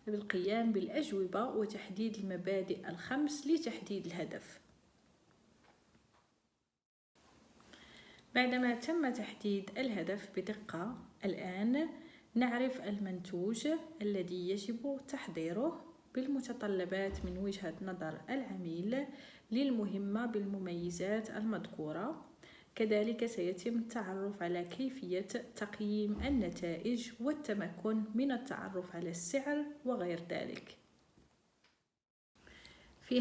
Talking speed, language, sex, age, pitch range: 75 wpm, Arabic, female, 40-59, 190-250 Hz